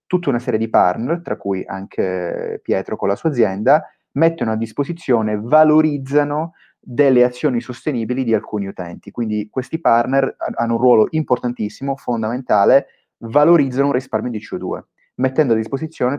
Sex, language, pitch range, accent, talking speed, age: male, Italian, 110-150 Hz, native, 145 wpm, 30-49